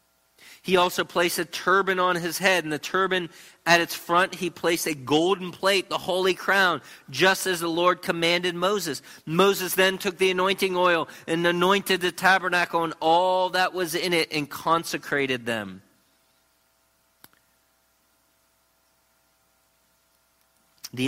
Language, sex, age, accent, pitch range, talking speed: English, male, 40-59, American, 120-170 Hz, 135 wpm